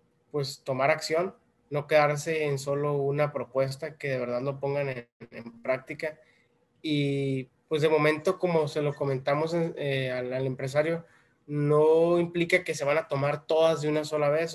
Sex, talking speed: male, 175 wpm